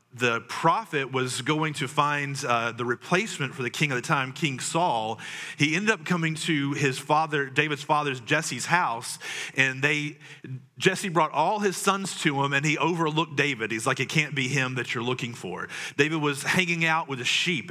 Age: 30-49